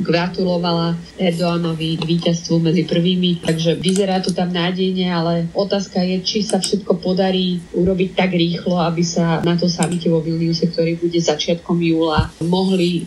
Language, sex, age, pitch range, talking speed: Slovak, female, 20-39, 165-185 Hz, 145 wpm